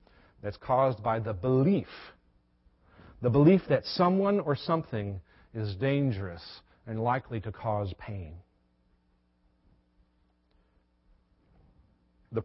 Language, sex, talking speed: English, male, 90 wpm